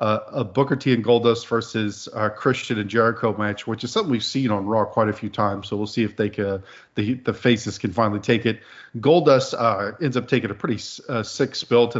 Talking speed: 235 wpm